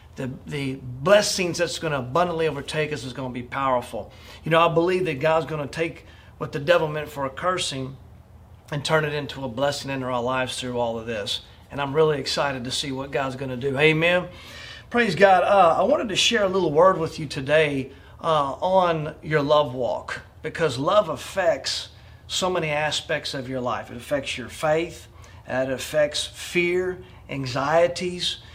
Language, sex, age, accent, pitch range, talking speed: English, male, 40-59, American, 130-170 Hz, 185 wpm